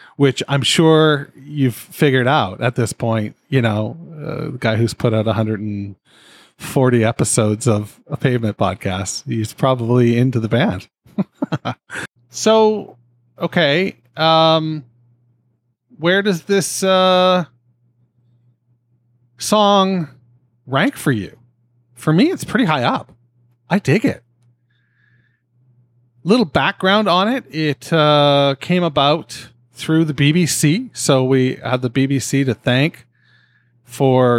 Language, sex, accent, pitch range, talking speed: English, male, American, 120-155 Hz, 115 wpm